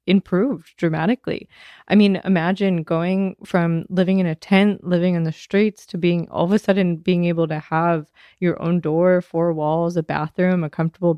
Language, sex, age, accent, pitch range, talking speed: English, female, 20-39, American, 160-185 Hz, 185 wpm